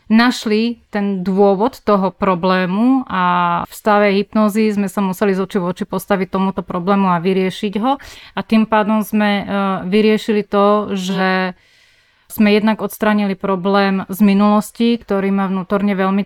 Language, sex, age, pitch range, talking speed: Slovak, female, 30-49, 190-215 Hz, 145 wpm